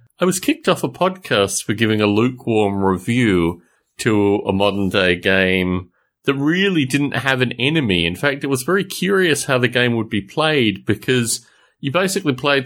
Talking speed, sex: 175 wpm, male